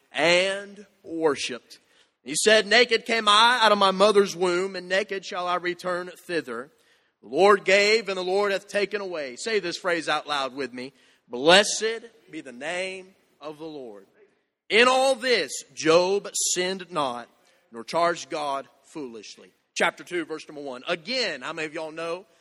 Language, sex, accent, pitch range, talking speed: English, male, American, 175-225 Hz, 165 wpm